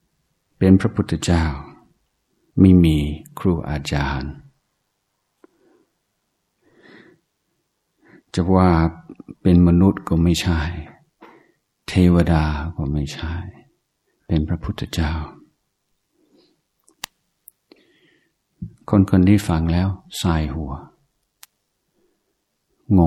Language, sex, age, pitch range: Thai, male, 60-79, 80-100 Hz